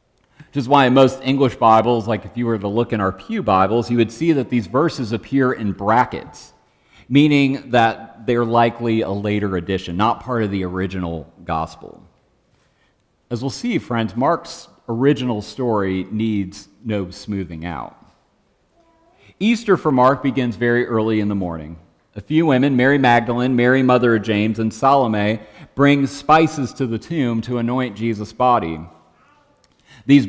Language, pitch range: English, 105-135 Hz